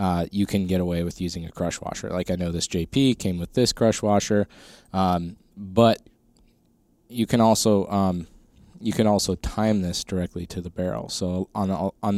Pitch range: 90-105 Hz